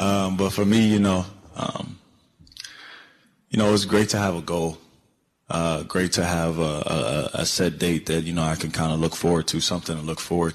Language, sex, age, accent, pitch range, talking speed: English, male, 20-39, American, 80-90 Hz, 215 wpm